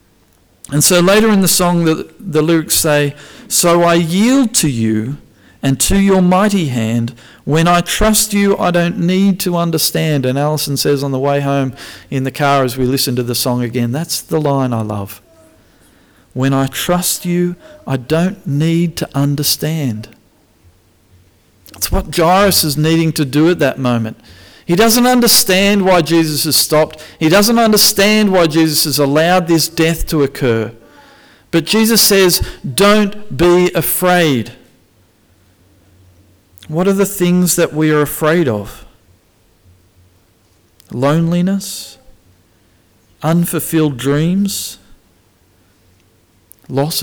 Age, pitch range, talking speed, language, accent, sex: 40-59, 110-175 Hz, 135 wpm, English, Australian, male